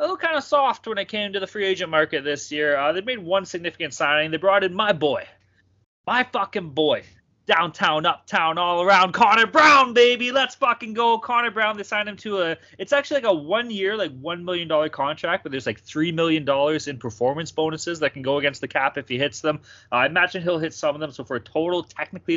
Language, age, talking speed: English, 20-39, 235 wpm